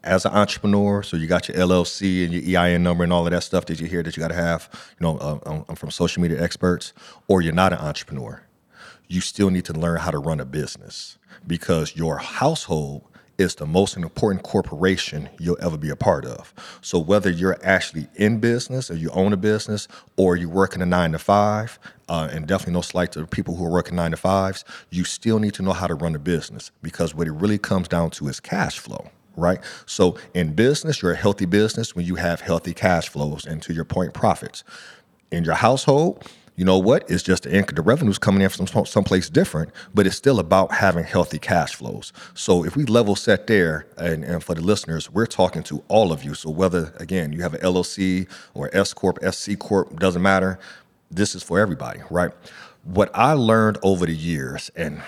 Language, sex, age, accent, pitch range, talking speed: English, male, 30-49, American, 85-100 Hz, 220 wpm